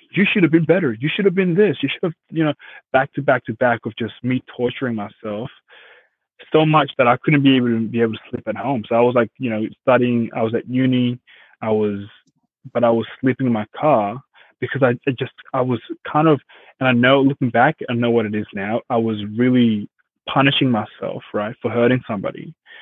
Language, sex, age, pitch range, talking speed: English, male, 20-39, 115-140 Hz, 230 wpm